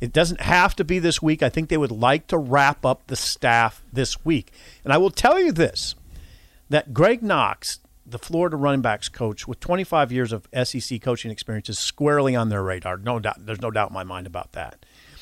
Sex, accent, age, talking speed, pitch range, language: male, American, 40-59, 215 wpm, 110-135 Hz, English